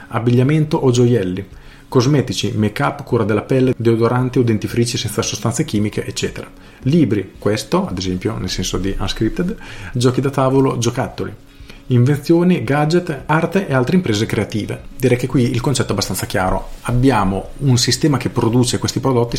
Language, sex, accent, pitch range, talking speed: Italian, male, native, 105-135 Hz, 155 wpm